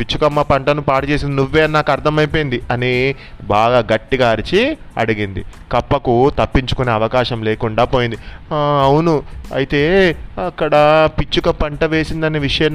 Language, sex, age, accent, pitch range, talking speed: Telugu, male, 30-49, native, 125-155 Hz, 110 wpm